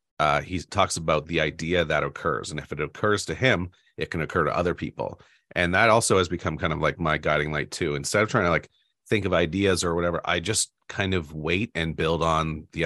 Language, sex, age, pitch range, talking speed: English, male, 30-49, 80-95 Hz, 240 wpm